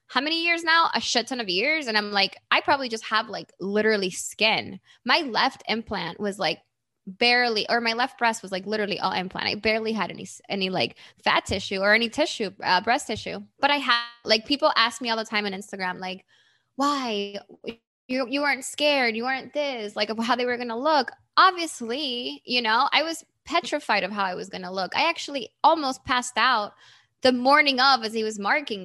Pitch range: 200-255 Hz